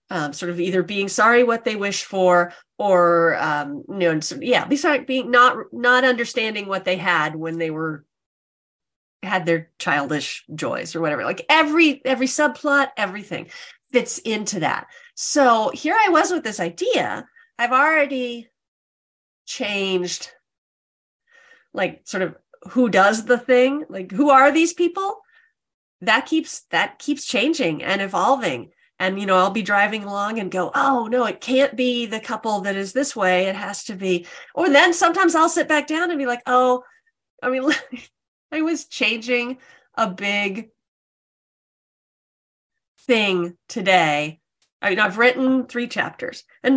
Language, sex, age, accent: English, female, 30-49, American